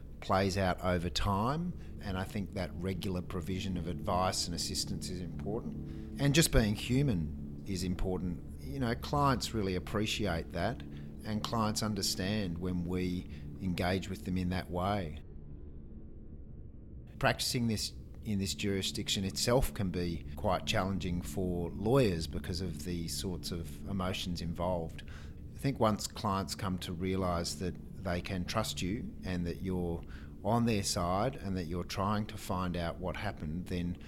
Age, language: 40-59, English